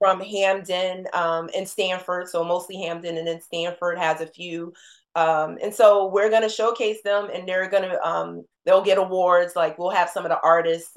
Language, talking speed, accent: English, 200 wpm, American